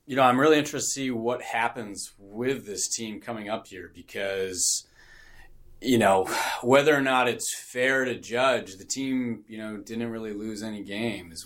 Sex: male